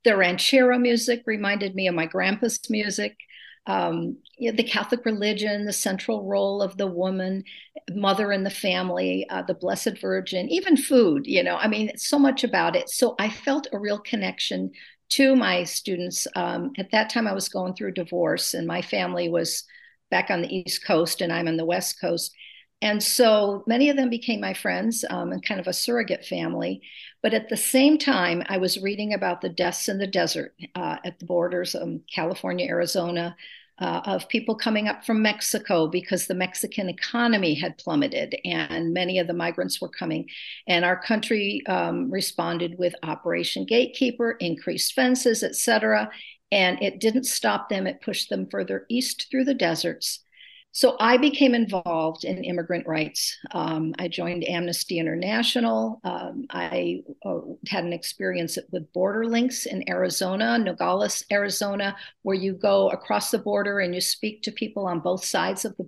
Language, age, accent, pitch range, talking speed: English, 50-69, American, 175-230 Hz, 175 wpm